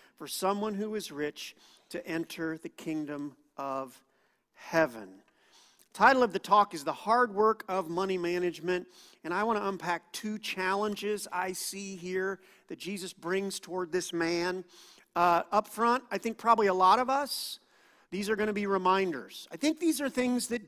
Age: 50-69